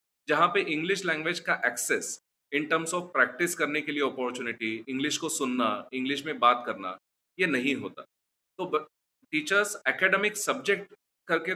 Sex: male